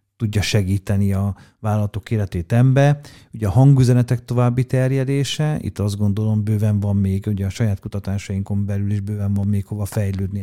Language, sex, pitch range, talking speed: Hungarian, male, 100-125 Hz, 160 wpm